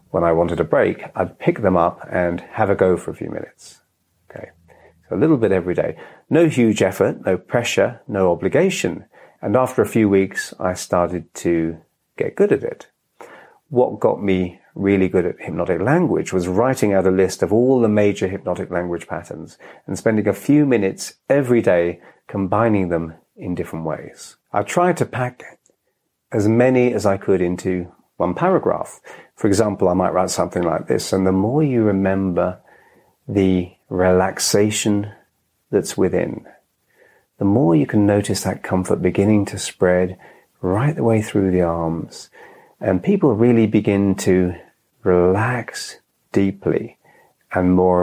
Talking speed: 160 wpm